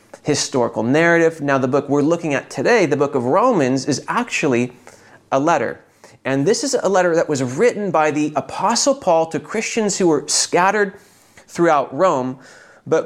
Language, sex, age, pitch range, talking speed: English, male, 30-49, 130-175 Hz, 170 wpm